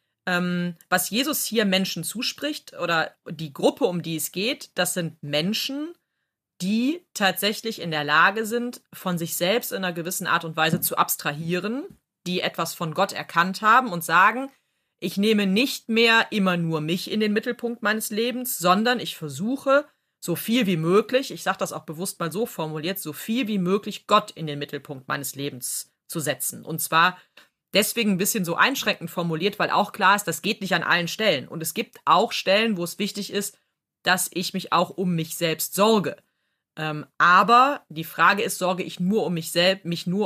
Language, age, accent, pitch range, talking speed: German, 30-49, German, 170-215 Hz, 190 wpm